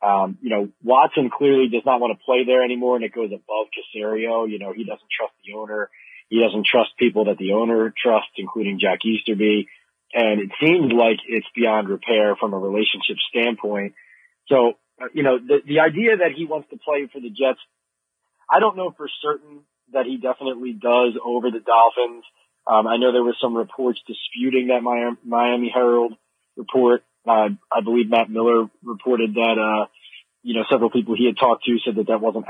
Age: 30-49